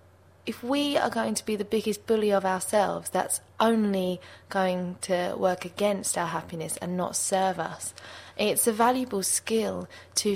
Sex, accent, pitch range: female, British, 180-225 Hz